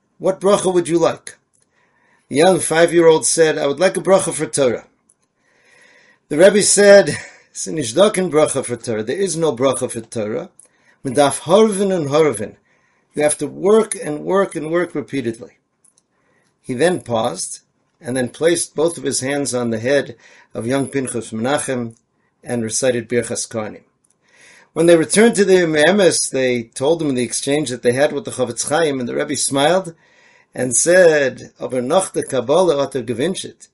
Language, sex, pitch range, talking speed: English, male, 125-180 Hz, 140 wpm